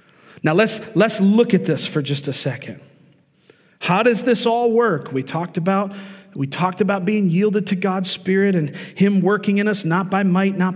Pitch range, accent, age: 145-195 Hz, American, 40-59